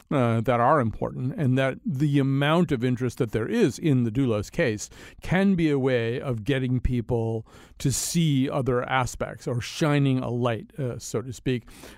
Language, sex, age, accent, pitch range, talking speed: English, male, 50-69, American, 115-140 Hz, 180 wpm